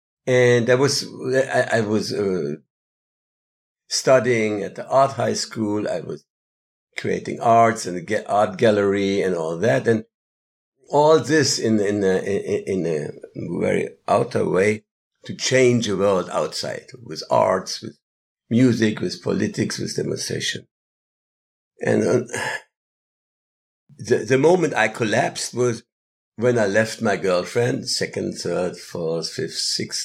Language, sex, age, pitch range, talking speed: English, male, 60-79, 95-125 Hz, 135 wpm